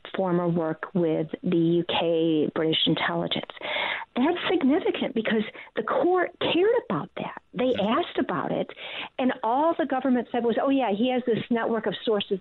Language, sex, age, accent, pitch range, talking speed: English, female, 50-69, American, 190-270 Hz, 160 wpm